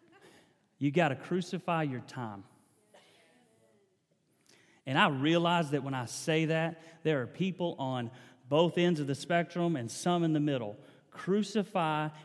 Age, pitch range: 30-49, 155-215 Hz